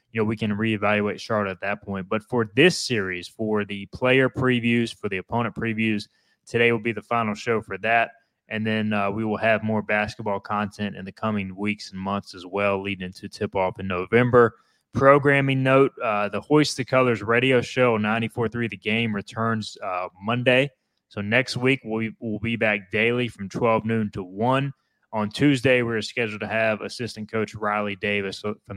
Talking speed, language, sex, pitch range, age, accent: 190 wpm, English, male, 100-120 Hz, 20-39, American